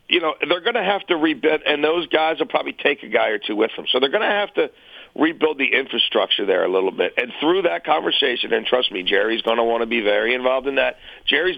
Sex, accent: male, American